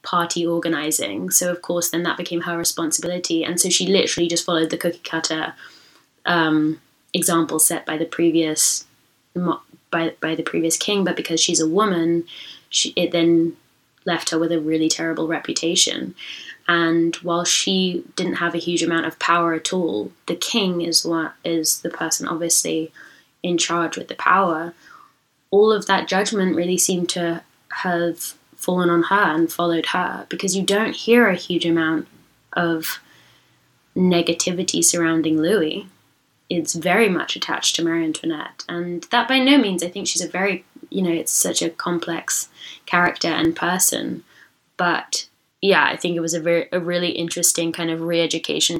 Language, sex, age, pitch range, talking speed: English, female, 20-39, 165-175 Hz, 165 wpm